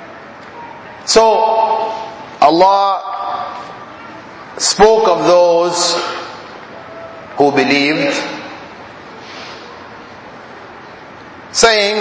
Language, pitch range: English, 165-220 Hz